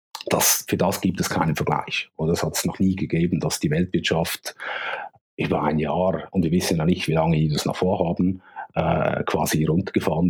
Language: German